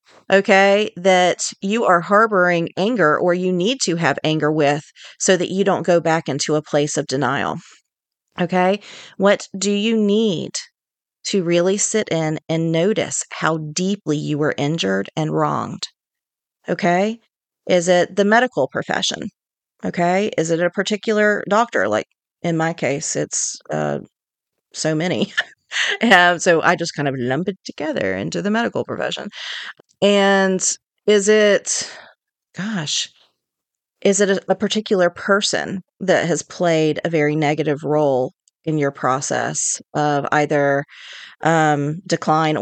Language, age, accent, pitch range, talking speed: English, 40-59, American, 155-195 Hz, 140 wpm